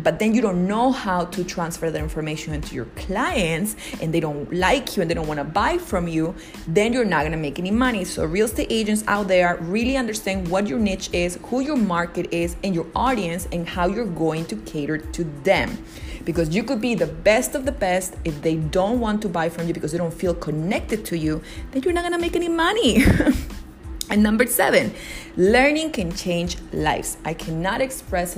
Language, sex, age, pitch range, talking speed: English, female, 30-49, 160-210 Hz, 210 wpm